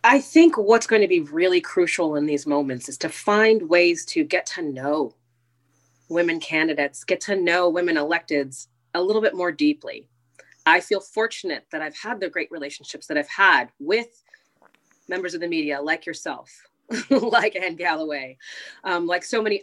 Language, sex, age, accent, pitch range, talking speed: English, female, 30-49, American, 165-230 Hz, 170 wpm